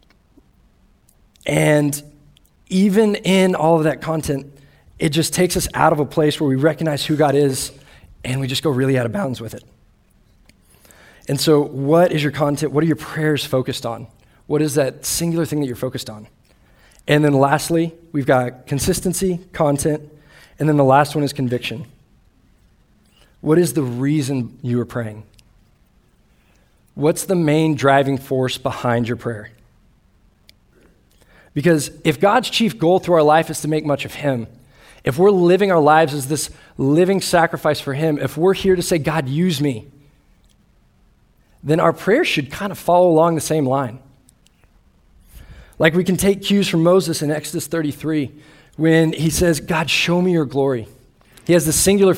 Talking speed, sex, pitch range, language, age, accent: 170 wpm, male, 130-165 Hz, English, 20-39, American